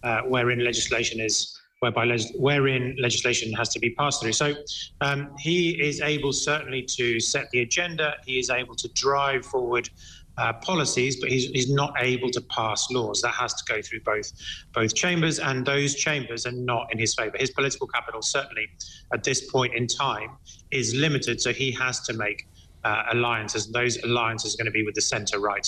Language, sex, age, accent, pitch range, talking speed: English, male, 30-49, British, 115-135 Hz, 195 wpm